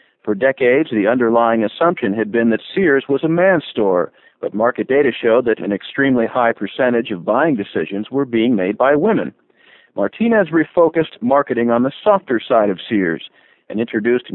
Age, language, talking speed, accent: 50-69, English, 170 wpm, American